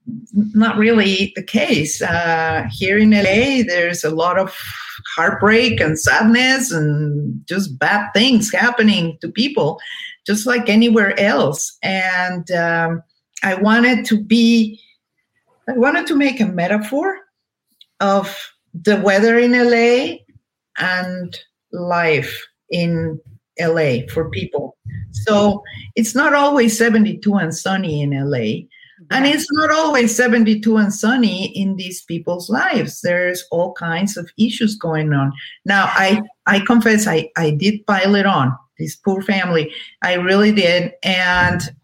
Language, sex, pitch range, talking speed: English, female, 175-225 Hz, 135 wpm